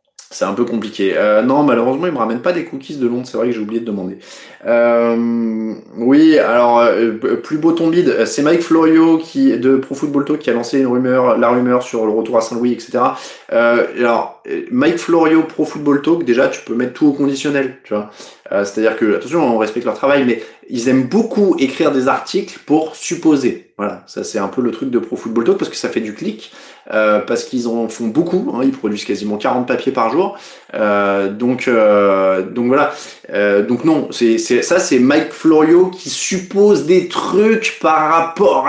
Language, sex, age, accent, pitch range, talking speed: French, male, 20-39, French, 115-160 Hz, 210 wpm